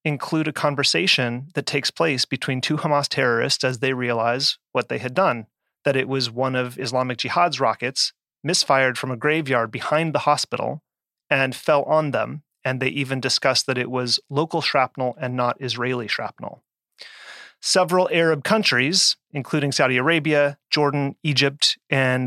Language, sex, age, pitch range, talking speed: English, male, 30-49, 130-155 Hz, 155 wpm